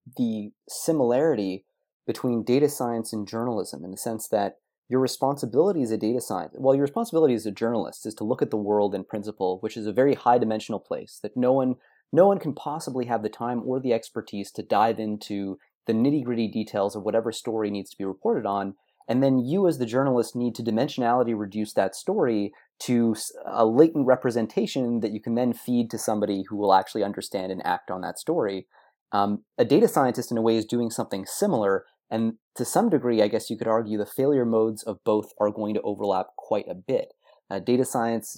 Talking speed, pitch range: 205 wpm, 105-125 Hz